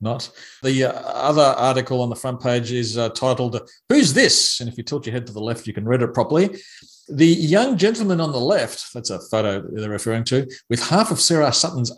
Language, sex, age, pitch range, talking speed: English, male, 40-59, 120-165 Hz, 225 wpm